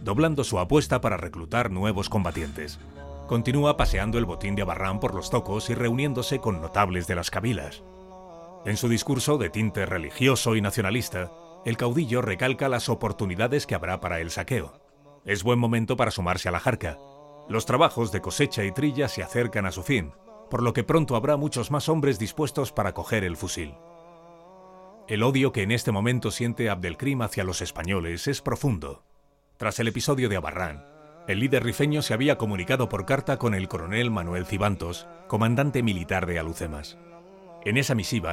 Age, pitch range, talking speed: 40-59, 95-135 Hz, 175 wpm